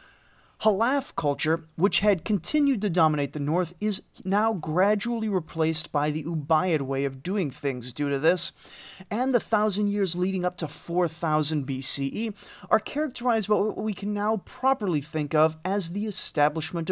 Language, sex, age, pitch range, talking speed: English, male, 30-49, 155-205 Hz, 160 wpm